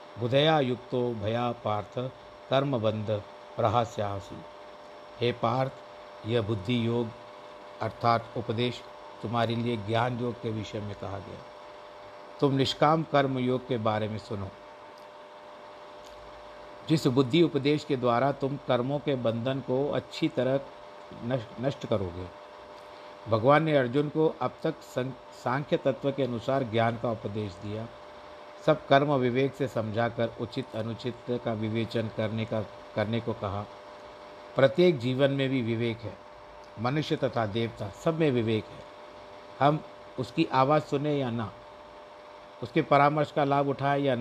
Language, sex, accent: Hindi, male, native